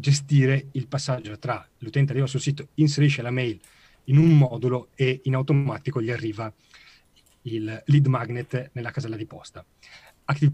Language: Italian